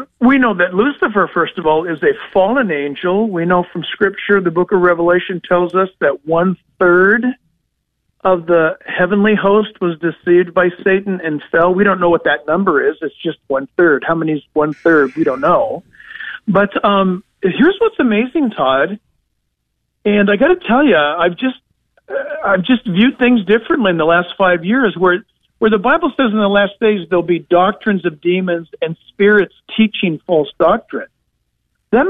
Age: 50-69